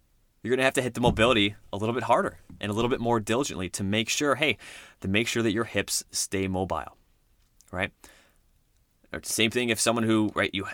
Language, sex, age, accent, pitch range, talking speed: English, male, 20-39, American, 95-120 Hz, 210 wpm